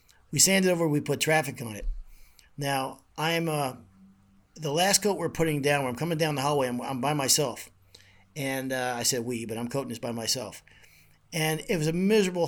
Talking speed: 205 wpm